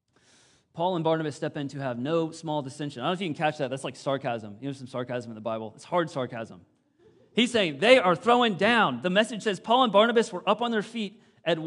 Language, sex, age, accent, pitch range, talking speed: English, male, 30-49, American, 140-200 Hz, 250 wpm